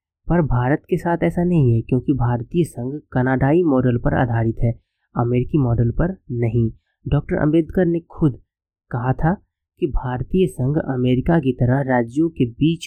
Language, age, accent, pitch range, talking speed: Hindi, 20-39, native, 120-155 Hz, 160 wpm